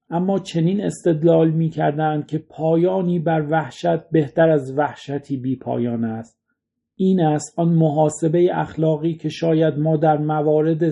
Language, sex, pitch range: Persian, male, 145-165 Hz